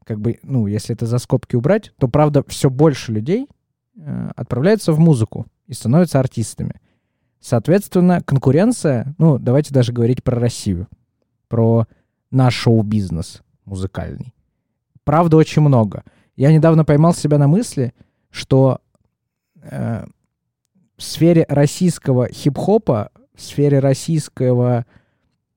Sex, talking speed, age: male, 115 wpm, 20-39